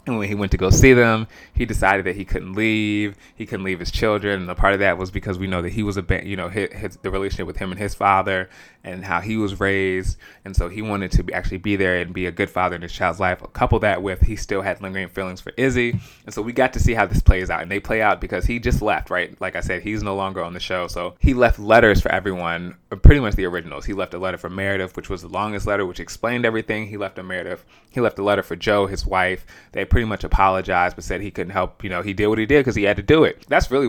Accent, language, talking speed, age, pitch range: American, English, 290 wpm, 20-39, 90-110 Hz